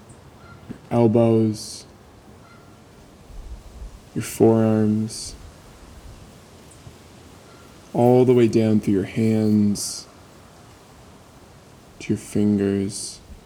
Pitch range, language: 100-115 Hz, English